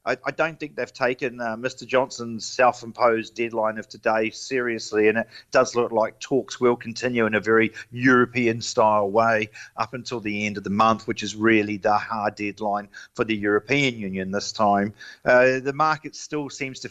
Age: 40-59